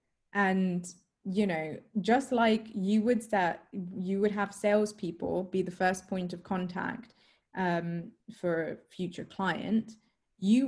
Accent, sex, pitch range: British, female, 175-205 Hz